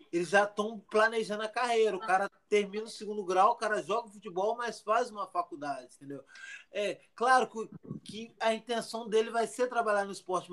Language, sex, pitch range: Portuguese, male, 175-225 Hz